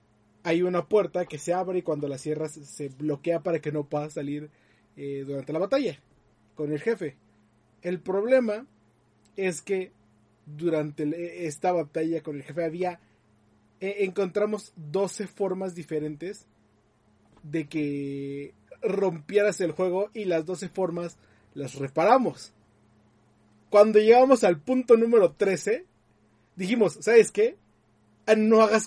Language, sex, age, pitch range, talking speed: Spanish, male, 30-49, 140-210 Hz, 130 wpm